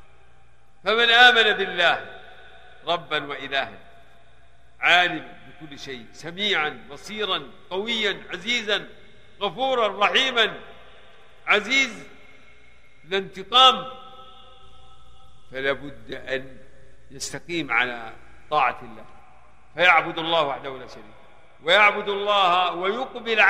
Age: 50-69